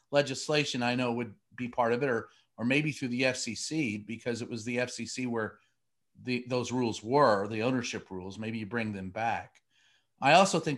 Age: 40-59